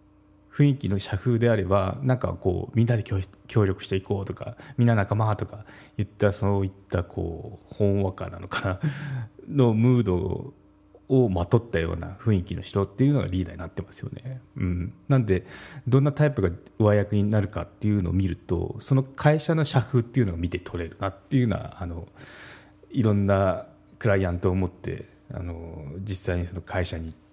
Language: Japanese